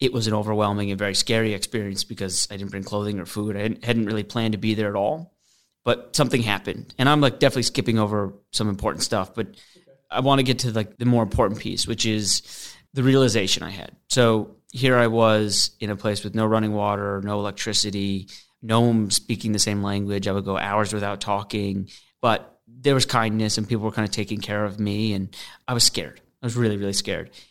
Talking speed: 215 wpm